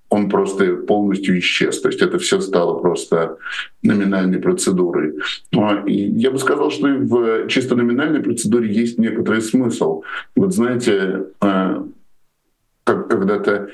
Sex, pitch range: male, 95-120 Hz